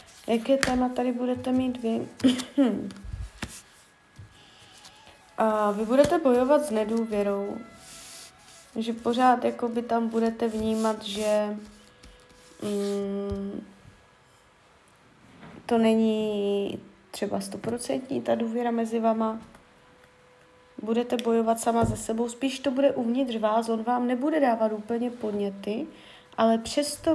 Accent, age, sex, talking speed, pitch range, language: native, 30-49, female, 105 wpm, 205-245 Hz, Czech